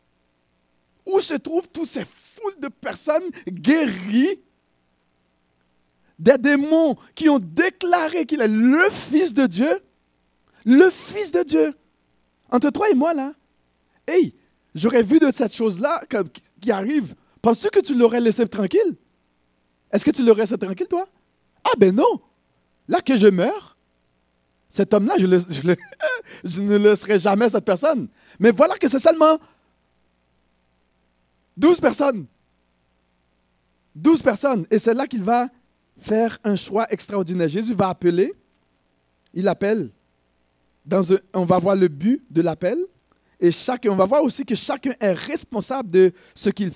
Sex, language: male, French